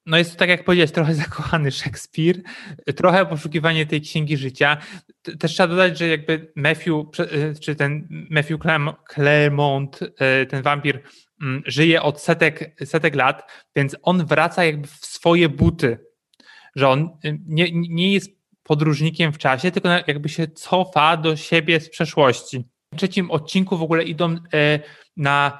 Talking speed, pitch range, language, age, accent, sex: 145 wpm, 150-170 Hz, Polish, 20-39, native, male